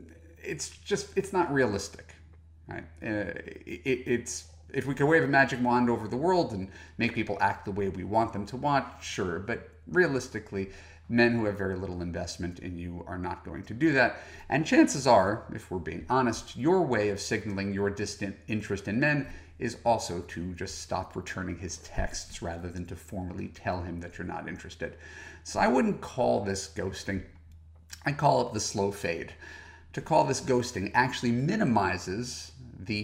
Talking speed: 180 wpm